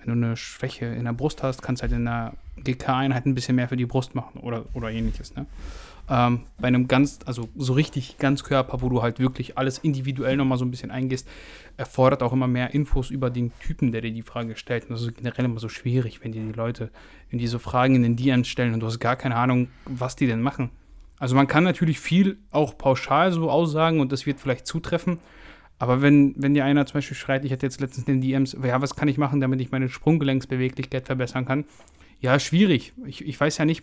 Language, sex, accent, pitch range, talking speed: German, male, German, 125-145 Hz, 240 wpm